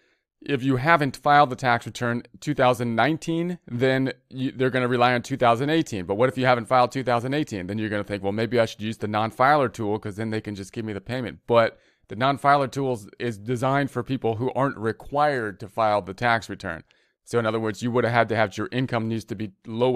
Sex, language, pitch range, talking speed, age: male, English, 100-125 Hz, 230 wpm, 30-49